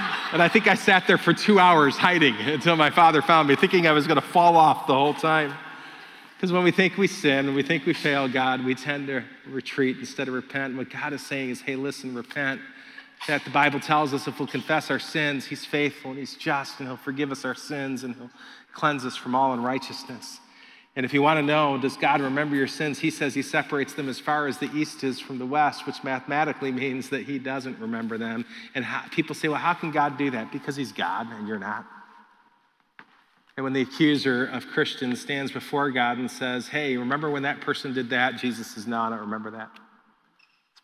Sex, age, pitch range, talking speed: male, 40-59, 130-150 Hz, 230 wpm